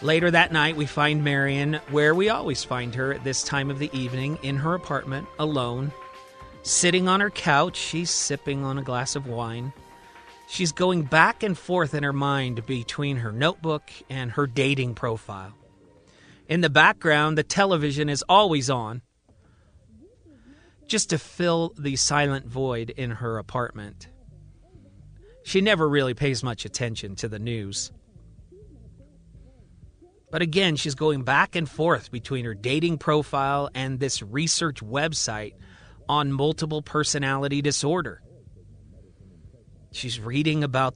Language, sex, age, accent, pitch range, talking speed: English, male, 40-59, American, 125-155 Hz, 140 wpm